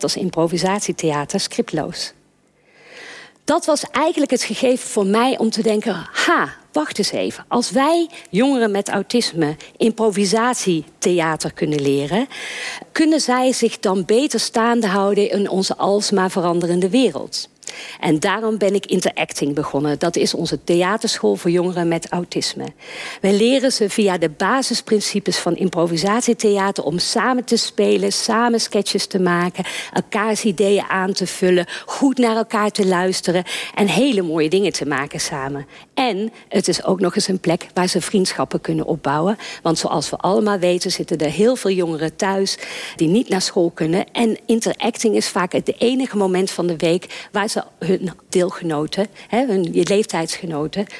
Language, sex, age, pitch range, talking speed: Dutch, female, 50-69, 175-225 Hz, 150 wpm